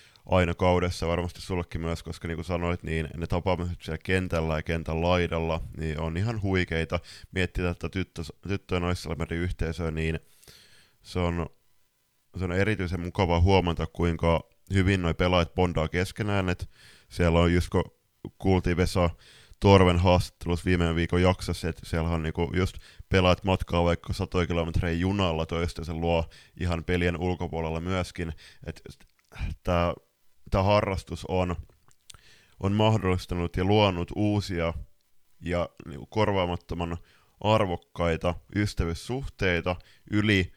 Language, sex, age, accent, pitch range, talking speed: Finnish, male, 20-39, native, 85-95 Hz, 130 wpm